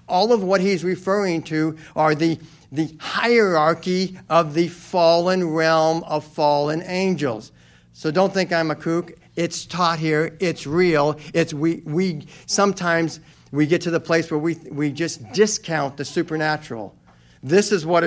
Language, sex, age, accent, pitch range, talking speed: English, male, 50-69, American, 150-180 Hz, 175 wpm